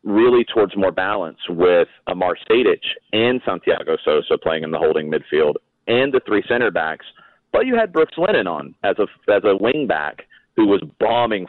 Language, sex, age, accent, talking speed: English, male, 40-59, American, 185 wpm